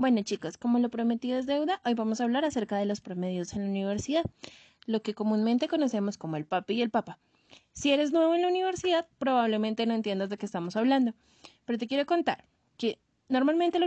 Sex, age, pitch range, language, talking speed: female, 20-39, 220-285 Hz, Spanish, 210 wpm